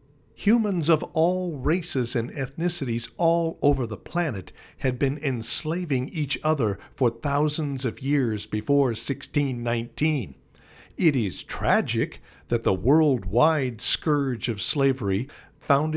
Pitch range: 115-160 Hz